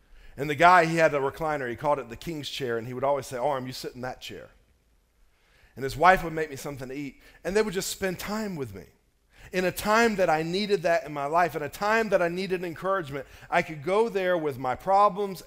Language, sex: English, male